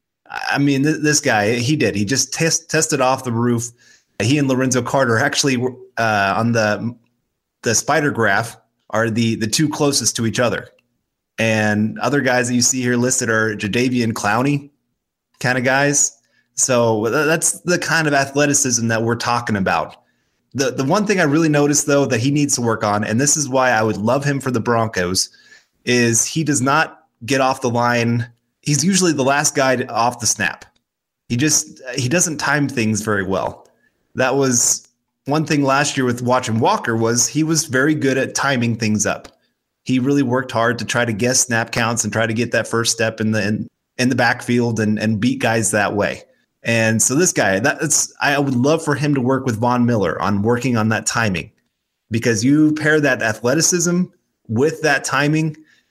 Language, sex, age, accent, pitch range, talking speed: English, male, 30-49, American, 115-140 Hz, 195 wpm